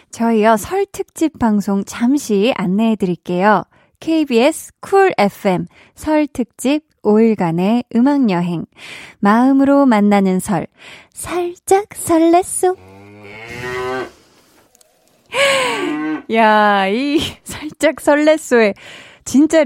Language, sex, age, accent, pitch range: Korean, female, 20-39, native, 200-305 Hz